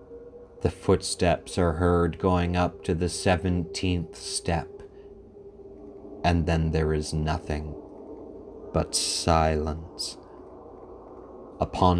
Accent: American